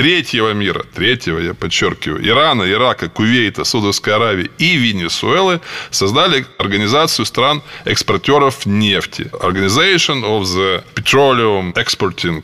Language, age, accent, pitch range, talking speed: Russian, 20-39, native, 105-160 Hz, 100 wpm